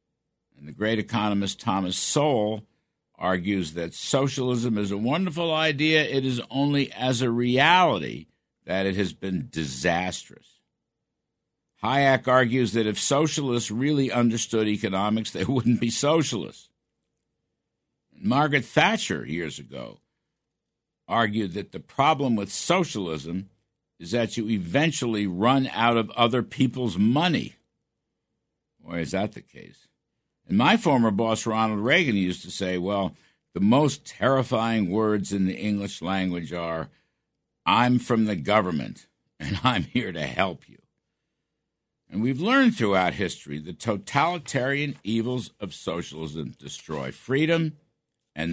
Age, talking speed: 60-79, 125 wpm